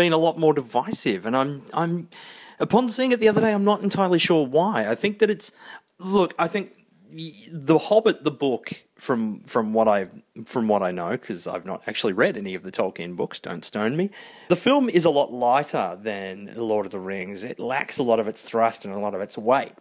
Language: English